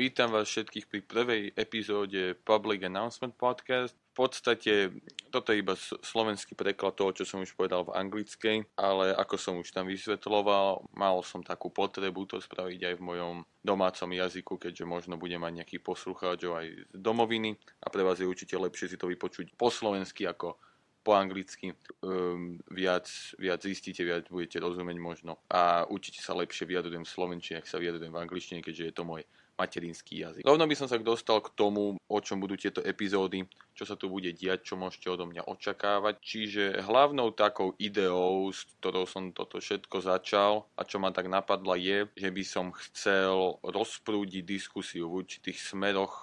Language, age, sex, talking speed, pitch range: English, 20-39, male, 175 wpm, 90-100 Hz